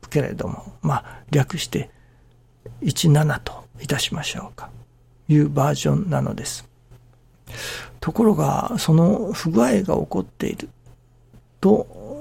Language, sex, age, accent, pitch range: Japanese, male, 60-79, native, 120-160 Hz